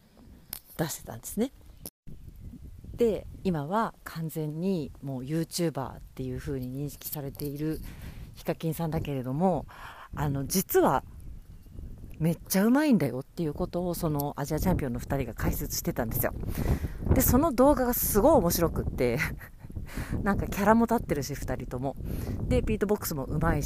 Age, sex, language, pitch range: 40-59, female, Japanese, 135-190 Hz